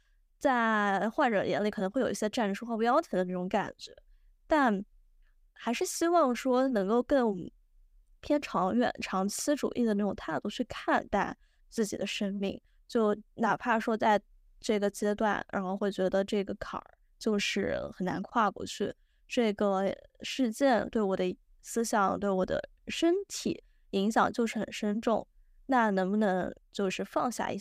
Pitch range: 190-230 Hz